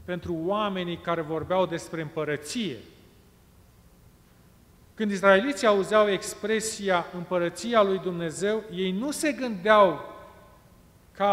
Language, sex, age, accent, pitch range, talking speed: Romanian, male, 40-59, native, 170-220 Hz, 95 wpm